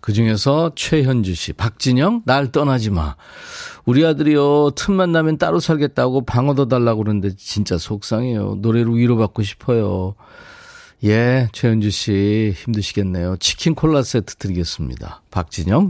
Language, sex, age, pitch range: Korean, male, 40-59, 100-145 Hz